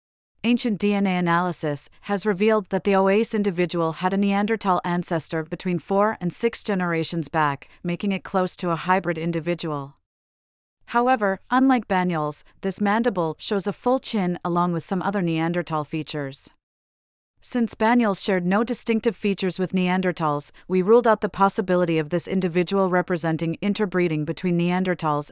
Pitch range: 165-200 Hz